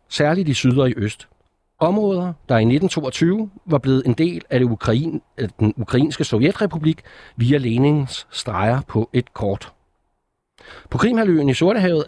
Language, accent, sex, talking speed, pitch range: Danish, native, male, 150 wpm, 115-155 Hz